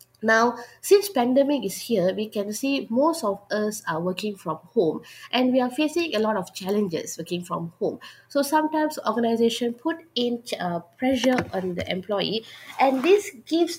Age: 20-39